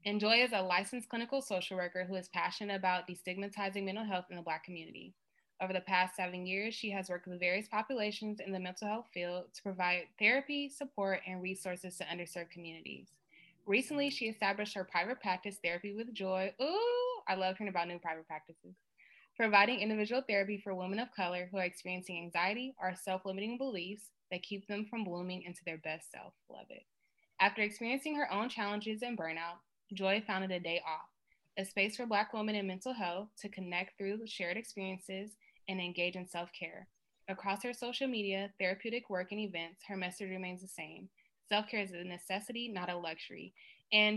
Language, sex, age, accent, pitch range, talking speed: English, female, 20-39, American, 180-215 Hz, 185 wpm